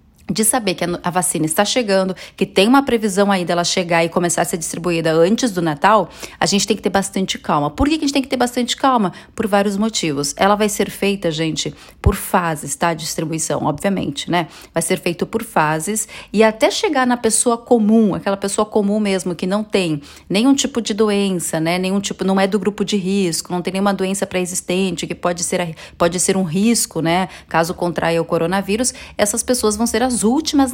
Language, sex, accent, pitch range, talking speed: Portuguese, female, Brazilian, 175-225 Hz, 210 wpm